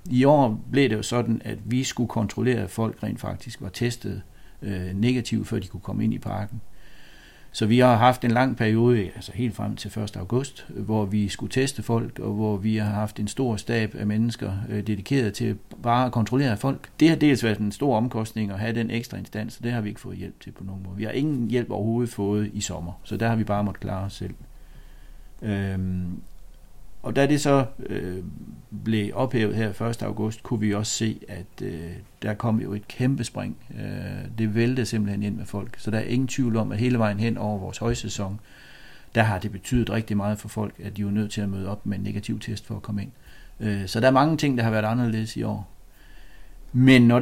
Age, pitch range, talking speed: 60-79, 105-120 Hz, 225 wpm